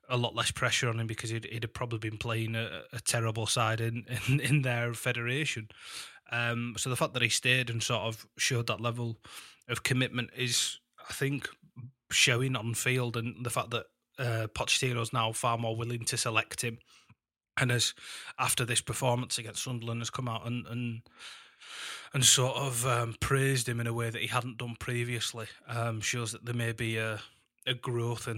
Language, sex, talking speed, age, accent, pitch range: English, male, 195 wpm, 20-39, British, 115-125 Hz